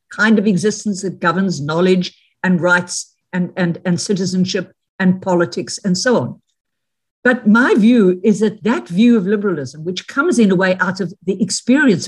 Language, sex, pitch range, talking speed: English, female, 175-215 Hz, 170 wpm